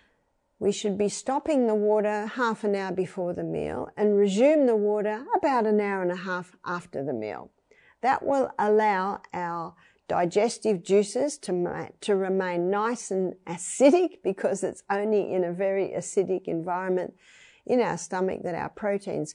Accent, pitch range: Australian, 180-230 Hz